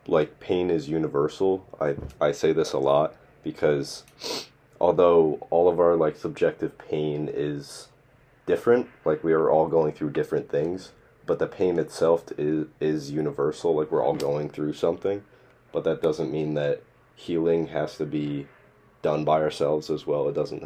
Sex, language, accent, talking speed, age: male, English, American, 165 wpm, 30-49